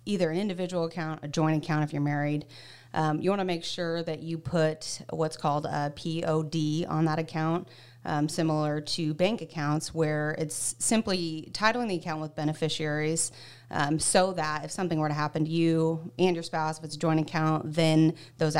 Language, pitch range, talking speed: English, 150-175 Hz, 190 wpm